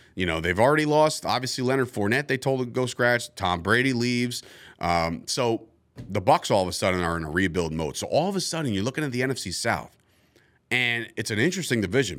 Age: 30-49